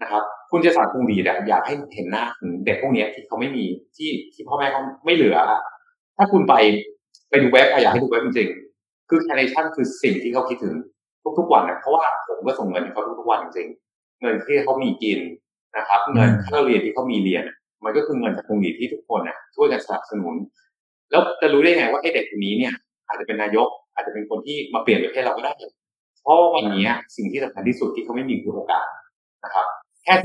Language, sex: Thai, male